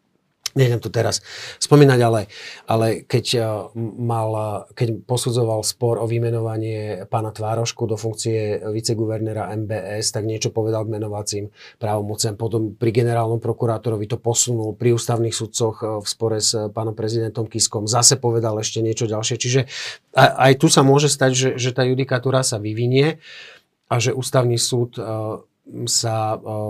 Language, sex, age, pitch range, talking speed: Slovak, male, 40-59, 110-130 Hz, 140 wpm